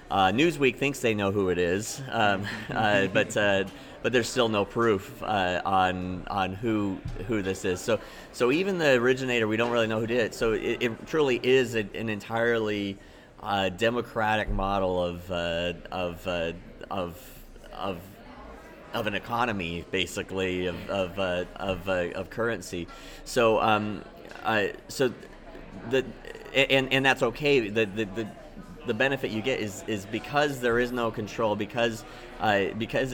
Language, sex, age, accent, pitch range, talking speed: German, male, 30-49, American, 95-115 Hz, 165 wpm